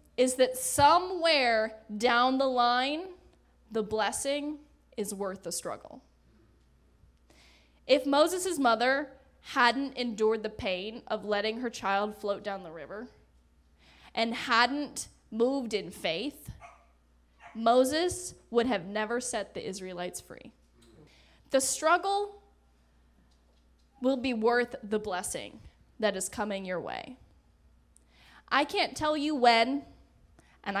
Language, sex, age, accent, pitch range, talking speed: English, female, 10-29, American, 170-260 Hz, 115 wpm